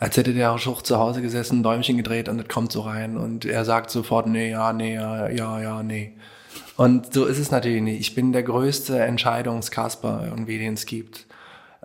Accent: German